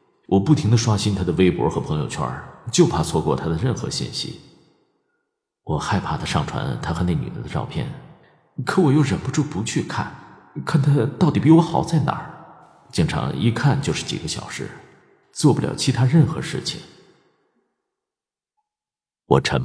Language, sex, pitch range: Chinese, male, 90-155 Hz